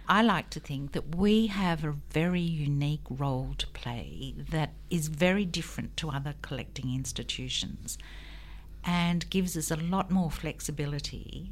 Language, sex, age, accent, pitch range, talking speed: English, female, 50-69, Australian, 140-165 Hz, 145 wpm